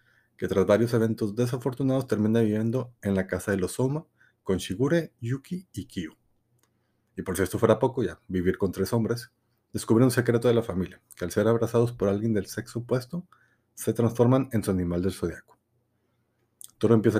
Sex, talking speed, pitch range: male, 185 wpm, 100-120 Hz